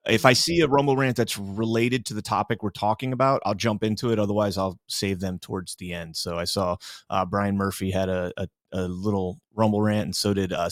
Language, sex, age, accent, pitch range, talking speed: English, male, 30-49, American, 105-130 Hz, 235 wpm